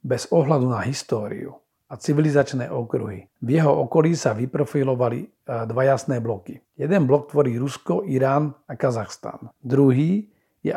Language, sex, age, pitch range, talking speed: Slovak, male, 50-69, 115-140 Hz, 135 wpm